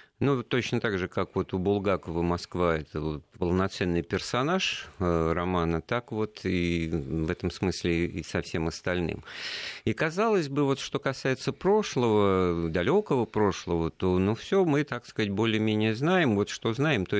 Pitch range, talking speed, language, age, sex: 85-115 Hz, 165 wpm, Russian, 50-69, male